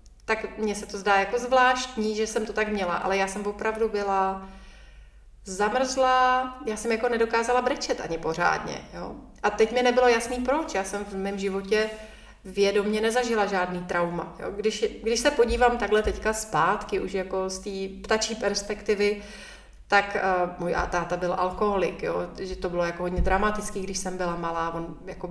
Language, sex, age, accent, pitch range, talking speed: Czech, female, 30-49, native, 185-225 Hz, 175 wpm